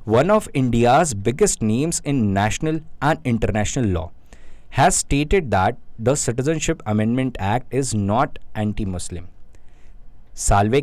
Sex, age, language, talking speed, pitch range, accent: male, 20-39, Hindi, 120 wpm, 105-145 Hz, native